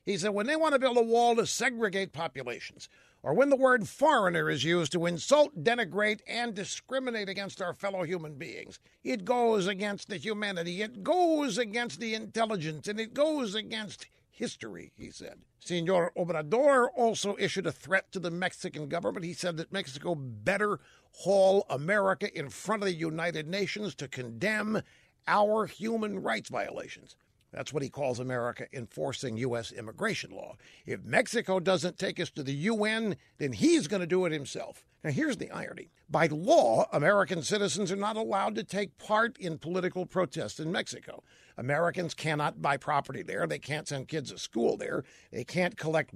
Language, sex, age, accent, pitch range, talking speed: English, male, 60-79, American, 165-220 Hz, 175 wpm